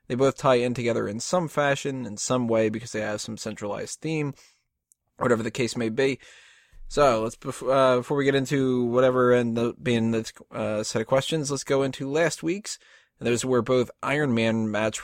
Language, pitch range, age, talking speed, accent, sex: English, 115-145 Hz, 20-39, 205 wpm, American, male